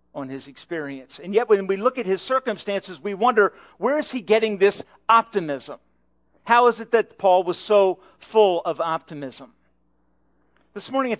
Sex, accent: male, American